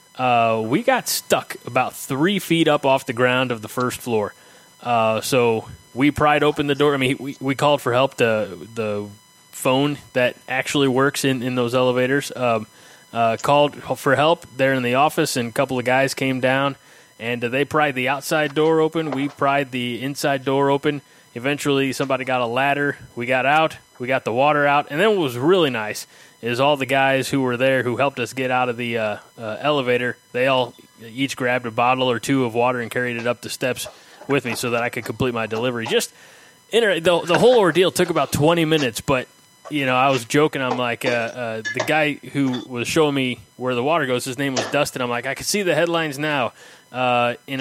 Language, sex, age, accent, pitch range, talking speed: English, male, 20-39, American, 120-145 Hz, 220 wpm